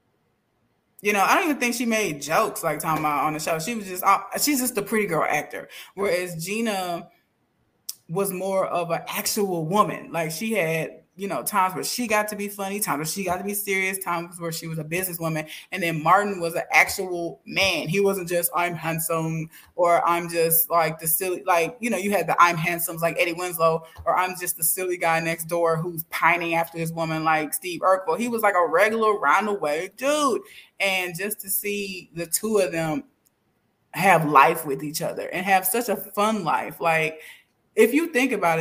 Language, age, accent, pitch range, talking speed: English, 20-39, American, 165-205 Hz, 205 wpm